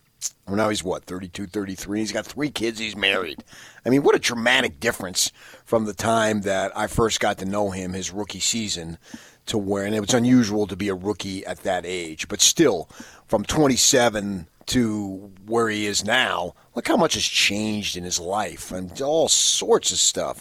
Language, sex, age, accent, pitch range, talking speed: English, male, 40-59, American, 100-145 Hz, 195 wpm